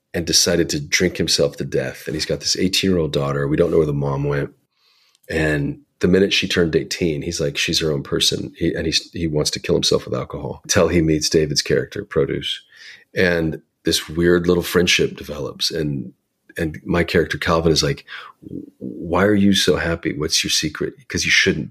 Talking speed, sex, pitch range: 205 wpm, male, 80-95 Hz